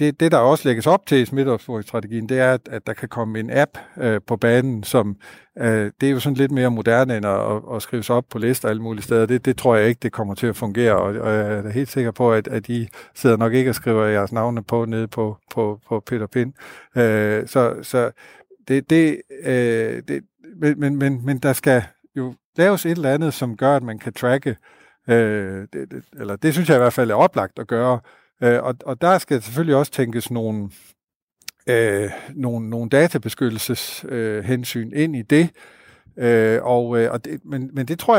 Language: Danish